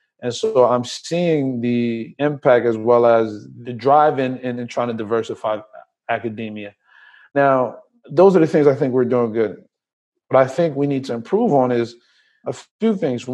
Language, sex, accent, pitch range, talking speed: English, male, American, 120-150 Hz, 175 wpm